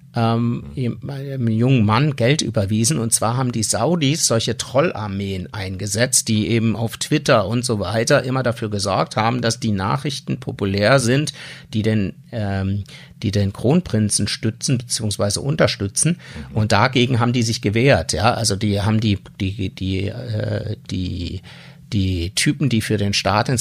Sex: male